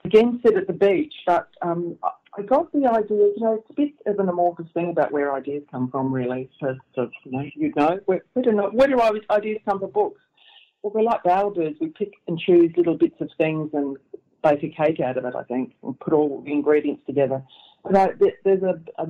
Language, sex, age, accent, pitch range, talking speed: English, female, 40-59, Australian, 140-205 Hz, 235 wpm